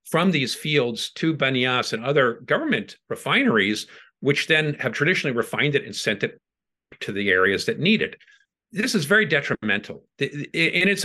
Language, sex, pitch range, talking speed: English, male, 140-210 Hz, 165 wpm